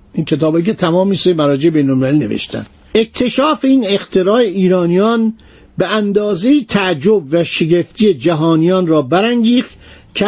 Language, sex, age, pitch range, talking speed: Persian, male, 50-69, 165-215 Hz, 130 wpm